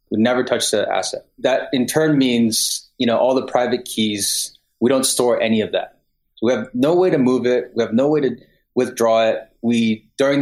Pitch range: 110-130 Hz